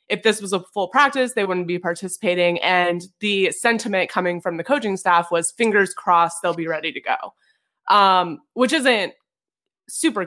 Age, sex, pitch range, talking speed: 20-39, female, 170-210 Hz, 175 wpm